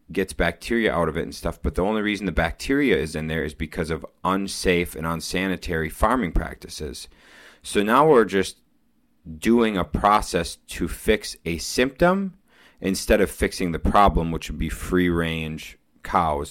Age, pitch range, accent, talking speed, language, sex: 30-49, 80-95 Hz, American, 165 wpm, English, male